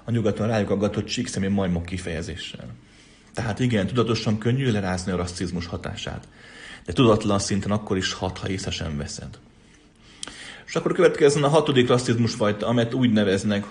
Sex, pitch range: male, 95-120 Hz